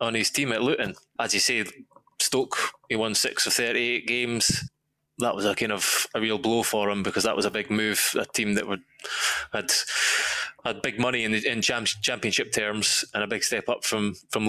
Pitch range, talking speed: 100-120 Hz, 210 wpm